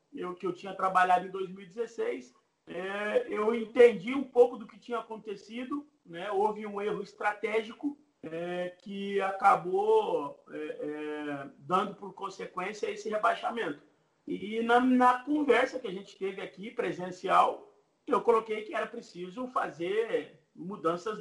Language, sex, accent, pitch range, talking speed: Portuguese, male, Brazilian, 185-245 Hz, 120 wpm